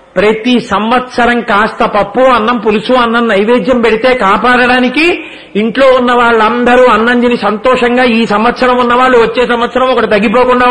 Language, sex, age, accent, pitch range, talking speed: Telugu, male, 40-59, native, 220-255 Hz, 130 wpm